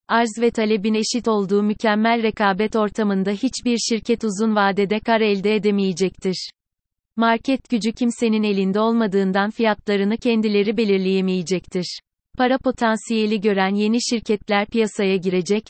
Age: 30-49